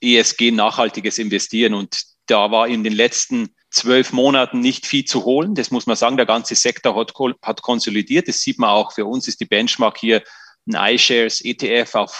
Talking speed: 185 wpm